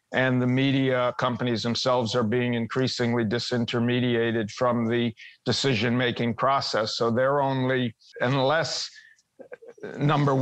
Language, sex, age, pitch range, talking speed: English, male, 50-69, 120-135 Hz, 105 wpm